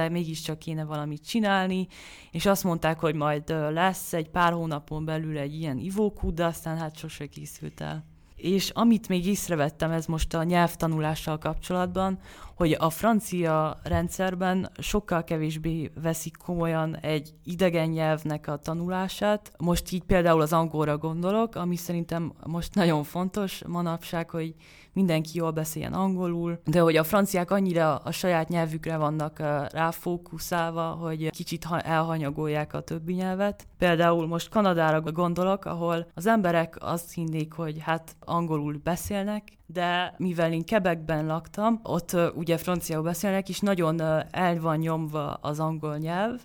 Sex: female